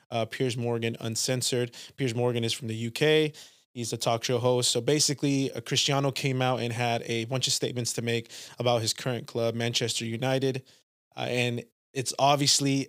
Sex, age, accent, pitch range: male, 20-39, American, 120-140 Hz